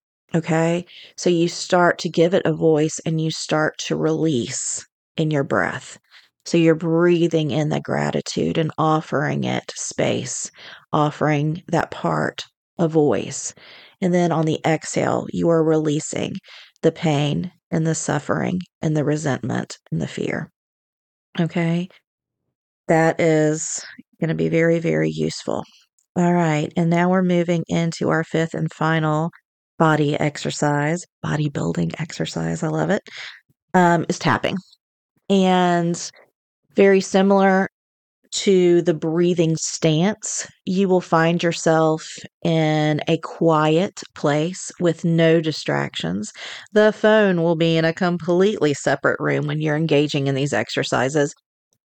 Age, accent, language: 40-59, American, English